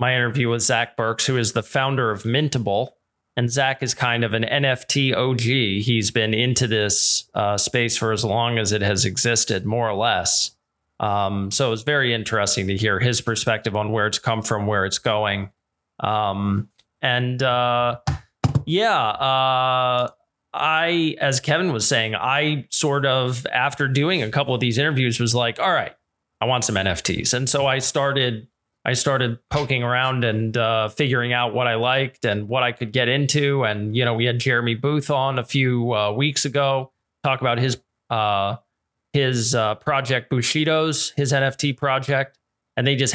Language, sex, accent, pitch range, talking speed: English, male, American, 115-135 Hz, 180 wpm